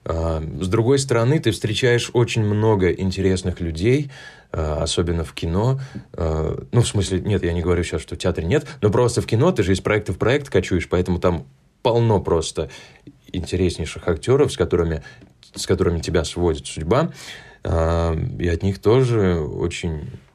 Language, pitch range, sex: Russian, 80-105 Hz, male